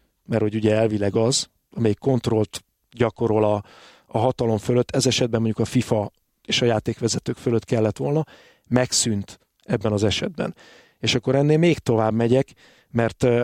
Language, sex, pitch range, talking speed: Hungarian, male, 110-130 Hz, 150 wpm